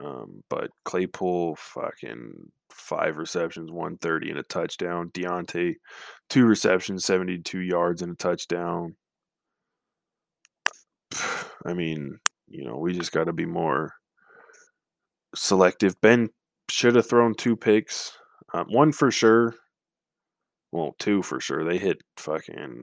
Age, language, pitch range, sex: 20-39, English, 90-115 Hz, male